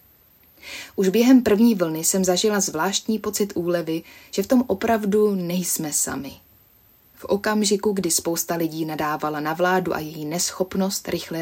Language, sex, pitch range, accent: Czech, female, 160-210 Hz, native